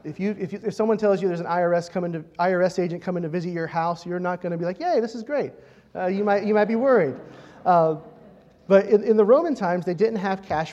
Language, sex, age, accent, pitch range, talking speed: English, male, 30-49, American, 160-195 Hz, 270 wpm